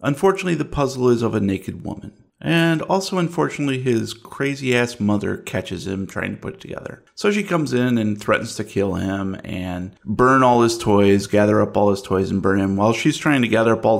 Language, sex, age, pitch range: English, male, 30-49, 100-130 Hz